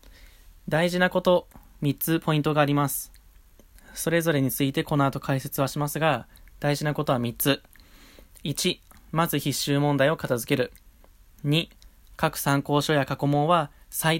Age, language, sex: 20-39, Japanese, male